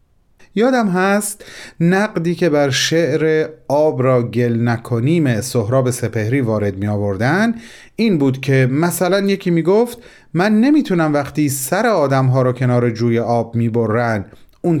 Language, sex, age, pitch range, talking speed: Persian, male, 30-49, 110-140 Hz, 125 wpm